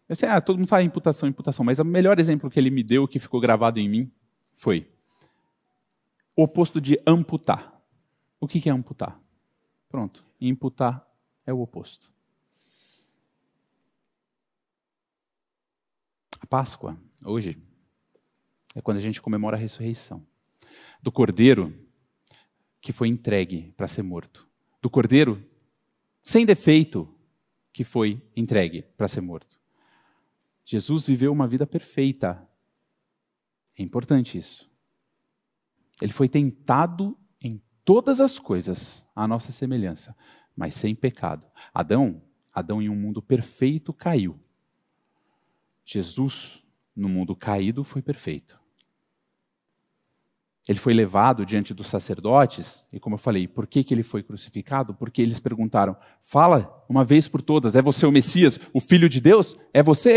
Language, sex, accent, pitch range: Portuguese, male, Brazilian, 110-150 Hz